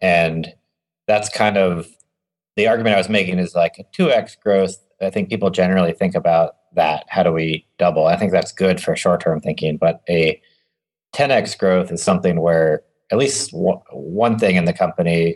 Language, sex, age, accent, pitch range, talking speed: English, male, 30-49, American, 80-90 Hz, 185 wpm